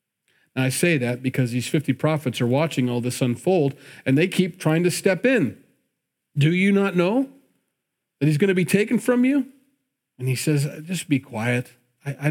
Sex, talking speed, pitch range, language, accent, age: male, 190 wpm, 130-175 Hz, English, American, 40-59